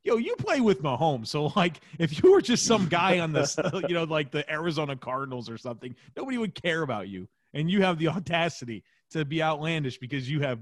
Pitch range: 120-160 Hz